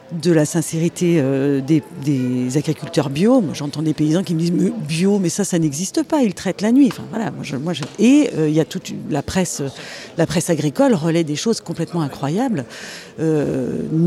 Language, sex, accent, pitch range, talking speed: French, female, French, 150-195 Hz, 215 wpm